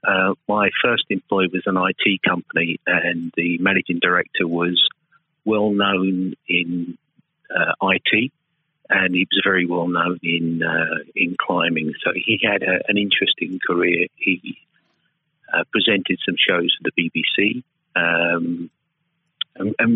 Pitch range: 85-125 Hz